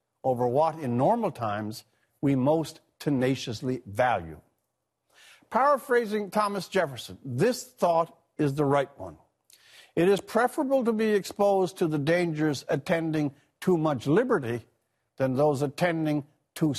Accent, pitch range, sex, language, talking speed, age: American, 130-190 Hz, male, English, 125 wpm, 60-79